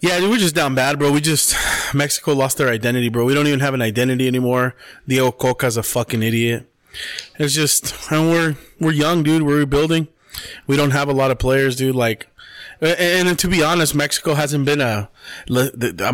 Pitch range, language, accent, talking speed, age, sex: 120-150 Hz, English, American, 195 wpm, 20-39, male